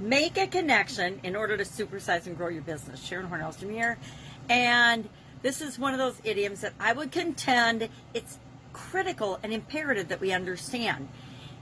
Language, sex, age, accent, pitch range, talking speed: English, female, 40-59, American, 170-235 Hz, 165 wpm